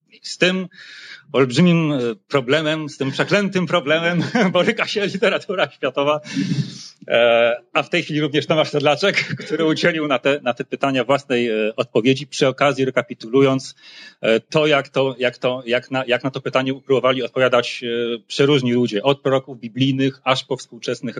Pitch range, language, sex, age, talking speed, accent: 125-160 Hz, Polish, male, 40-59, 140 wpm, native